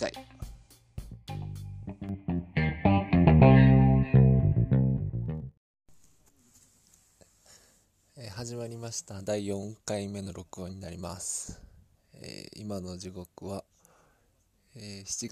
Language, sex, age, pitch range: Japanese, male, 20-39, 95-115 Hz